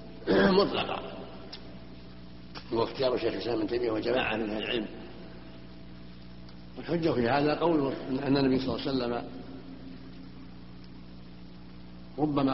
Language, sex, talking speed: Arabic, male, 105 wpm